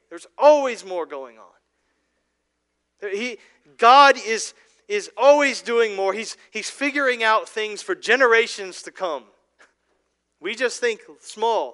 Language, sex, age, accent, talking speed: English, male, 40-59, American, 130 wpm